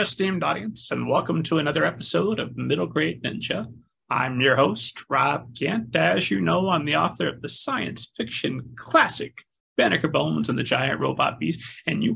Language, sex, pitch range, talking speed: English, male, 135-200 Hz, 180 wpm